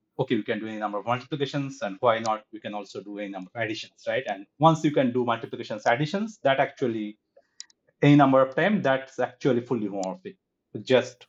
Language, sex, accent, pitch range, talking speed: English, male, Indian, 105-135 Hz, 200 wpm